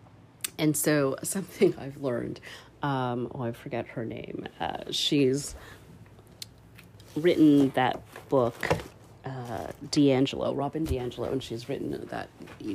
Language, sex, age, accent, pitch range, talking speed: English, female, 40-59, American, 125-150 Hz, 120 wpm